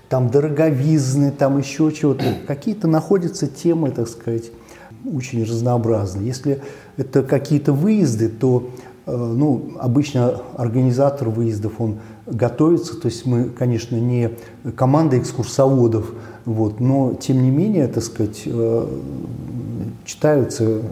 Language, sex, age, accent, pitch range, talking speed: Russian, male, 40-59, native, 115-145 Hz, 110 wpm